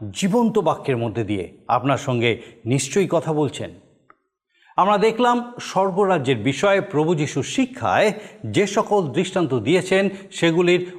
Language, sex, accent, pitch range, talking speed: Bengali, male, native, 145-200 Hz, 115 wpm